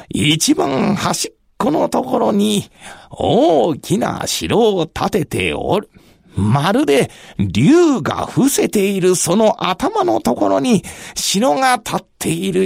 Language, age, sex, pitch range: Japanese, 40-59, male, 160-220 Hz